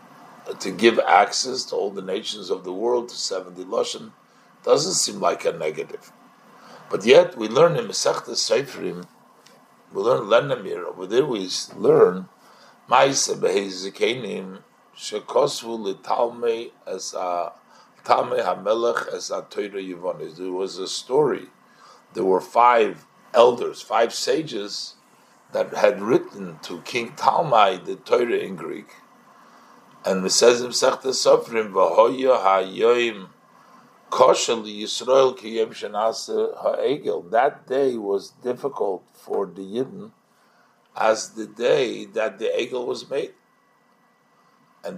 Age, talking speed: 50-69, 110 wpm